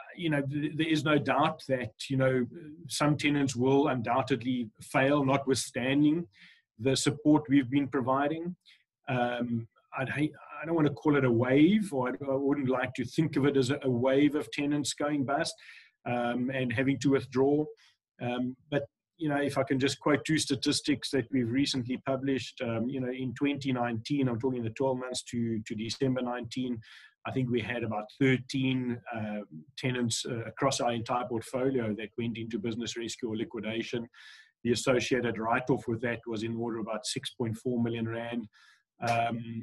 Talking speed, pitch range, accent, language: 170 wpm, 120-140 Hz, South African, English